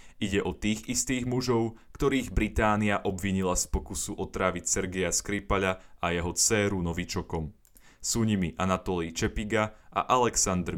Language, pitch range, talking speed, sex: Slovak, 90-110 Hz, 130 wpm, male